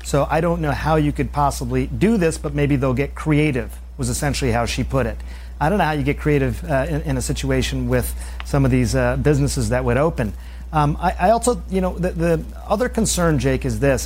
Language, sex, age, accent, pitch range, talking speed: English, male, 40-59, American, 130-165 Hz, 235 wpm